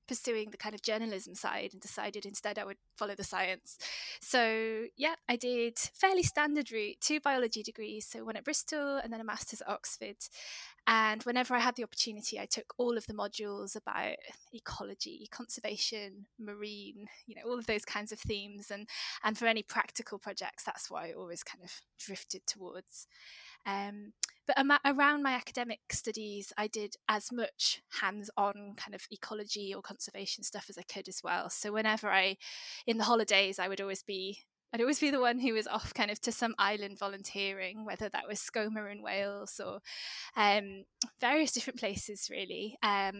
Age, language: 20-39, English